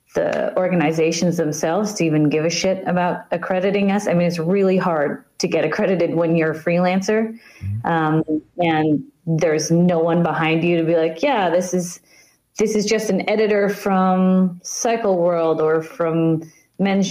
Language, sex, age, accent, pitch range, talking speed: English, female, 30-49, American, 165-195 Hz, 165 wpm